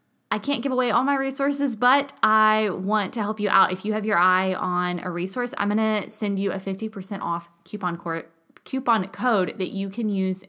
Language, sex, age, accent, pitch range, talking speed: English, female, 20-39, American, 175-220 Hz, 205 wpm